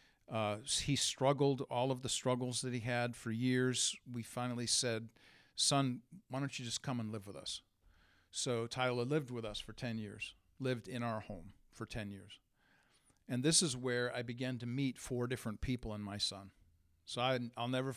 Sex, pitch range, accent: male, 105-125 Hz, American